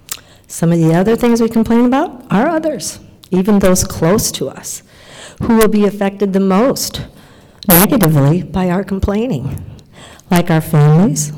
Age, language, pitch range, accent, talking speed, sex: 50-69, English, 160-200 Hz, American, 150 wpm, female